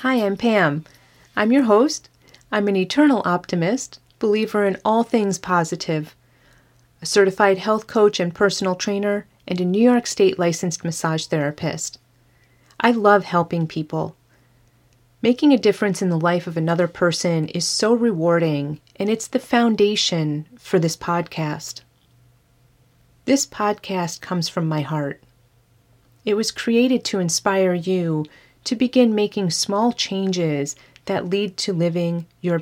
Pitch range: 150-205 Hz